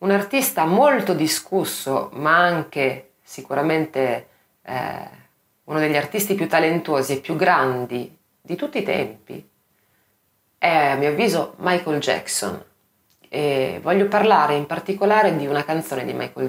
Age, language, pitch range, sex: 30-49, Italian, 120-150 Hz, female